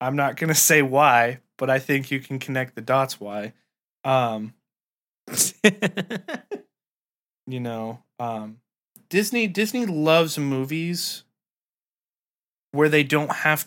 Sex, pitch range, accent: male, 120-150 Hz, American